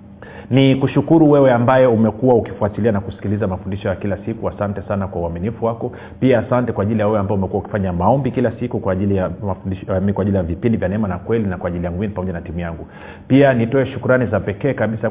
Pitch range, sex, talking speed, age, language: 100-125 Hz, male, 220 wpm, 40-59, Swahili